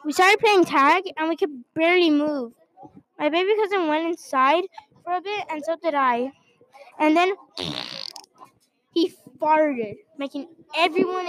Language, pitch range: English, 265-345 Hz